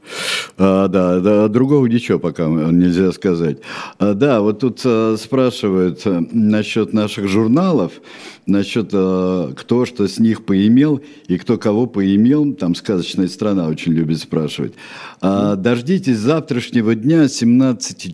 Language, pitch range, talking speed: Russian, 95-120 Hz, 115 wpm